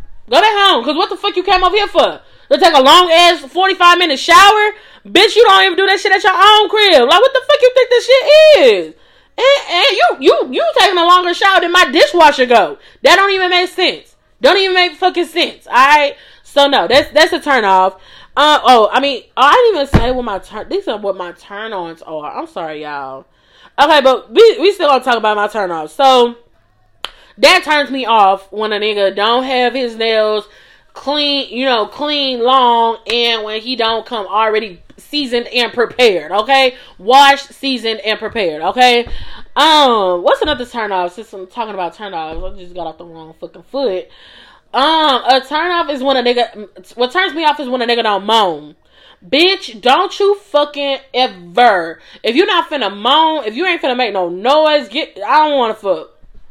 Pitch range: 215-345 Hz